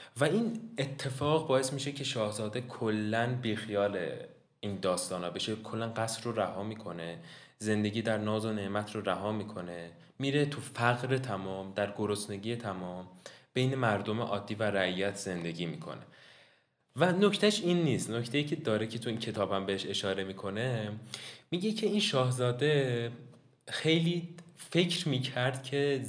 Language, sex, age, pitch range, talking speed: Persian, male, 20-39, 105-145 Hz, 145 wpm